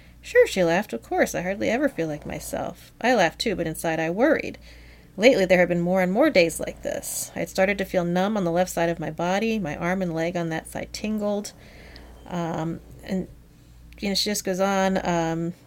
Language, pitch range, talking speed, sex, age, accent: English, 170-215 Hz, 220 wpm, female, 30-49, American